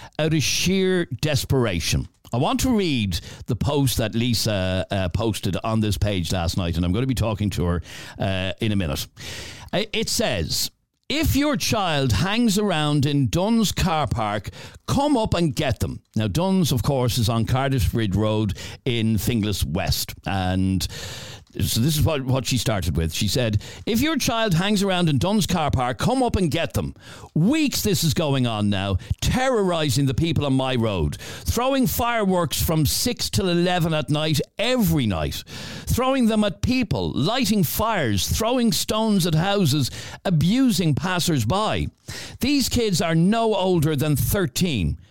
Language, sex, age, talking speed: English, male, 60-79, 165 wpm